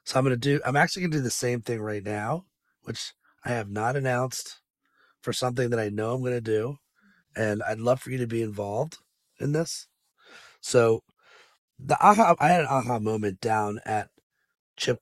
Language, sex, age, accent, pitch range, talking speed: English, male, 30-49, American, 105-140 Hz, 200 wpm